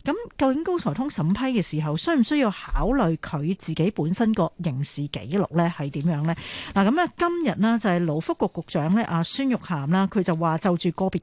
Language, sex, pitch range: Chinese, female, 165-230 Hz